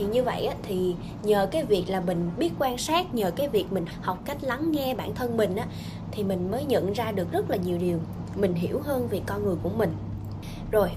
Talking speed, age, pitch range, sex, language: 230 wpm, 10-29, 170-230 Hz, female, Vietnamese